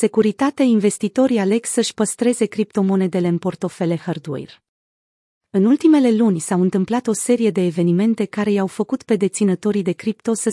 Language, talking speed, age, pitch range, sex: Romanian, 150 wpm, 40-59, 180-220 Hz, female